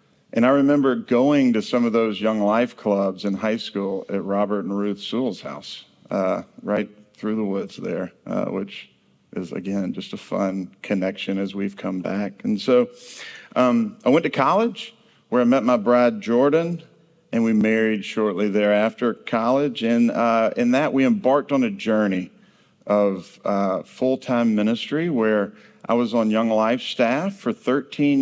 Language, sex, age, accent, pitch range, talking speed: English, male, 50-69, American, 100-135 Hz, 170 wpm